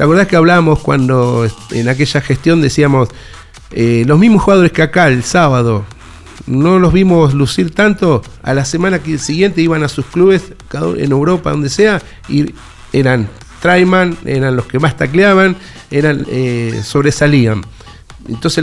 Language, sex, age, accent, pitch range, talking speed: Spanish, male, 40-59, Argentinian, 125-175 Hz, 150 wpm